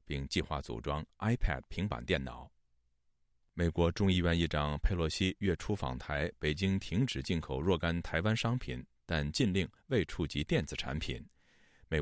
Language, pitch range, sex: Chinese, 70-100 Hz, male